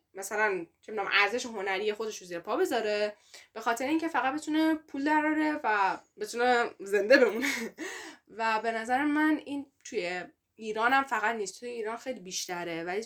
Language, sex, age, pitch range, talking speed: Persian, female, 10-29, 180-230 Hz, 150 wpm